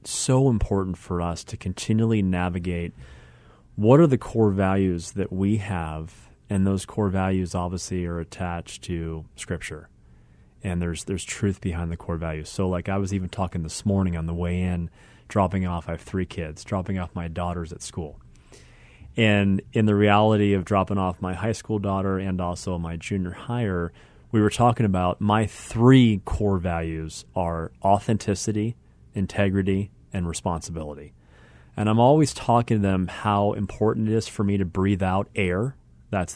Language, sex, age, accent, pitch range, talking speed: English, male, 30-49, American, 90-110 Hz, 170 wpm